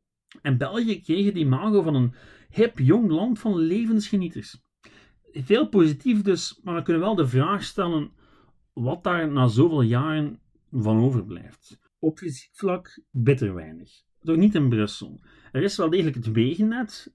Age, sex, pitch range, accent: 40-59, male, 120-165 Hz, Dutch